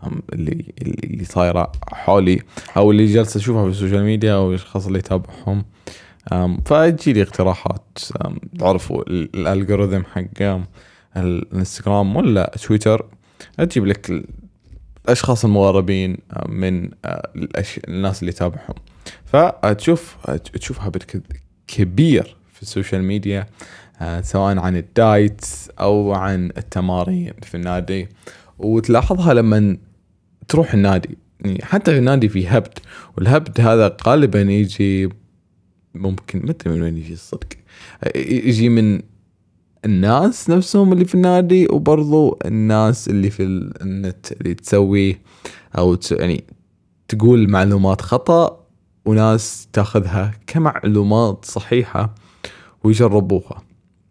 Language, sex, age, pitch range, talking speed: Arabic, male, 20-39, 95-110 Hz, 100 wpm